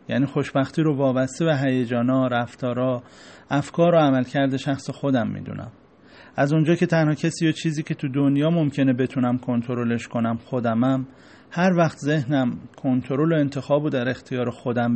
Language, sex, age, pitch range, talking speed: Persian, male, 40-59, 125-150 Hz, 150 wpm